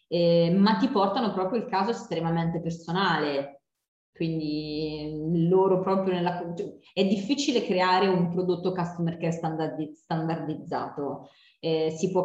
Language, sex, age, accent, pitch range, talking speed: Italian, female, 20-39, native, 160-185 Hz, 120 wpm